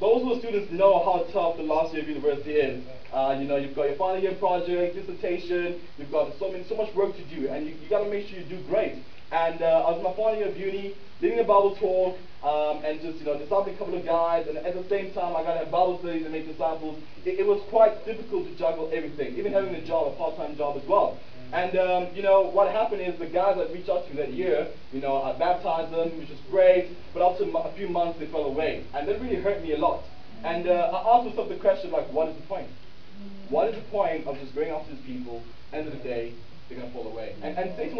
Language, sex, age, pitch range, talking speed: English, male, 20-39, 155-200 Hz, 265 wpm